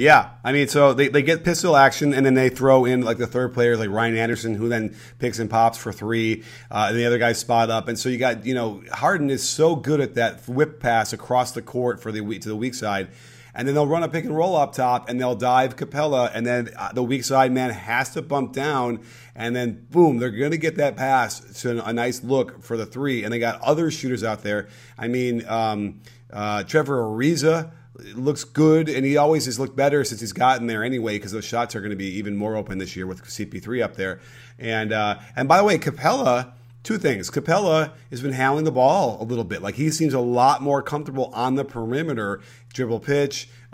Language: English